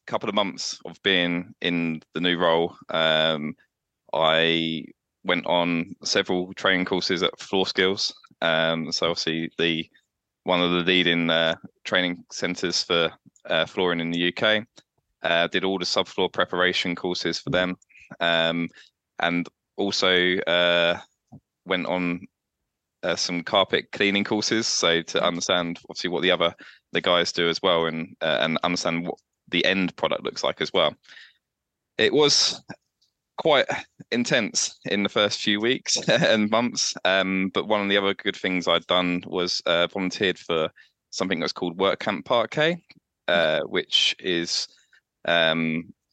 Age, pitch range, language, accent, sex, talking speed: 20-39, 85-95 Hz, English, British, male, 150 wpm